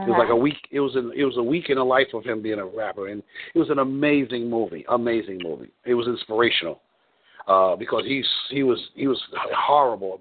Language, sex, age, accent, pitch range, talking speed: English, male, 50-69, American, 115-160 Hz, 230 wpm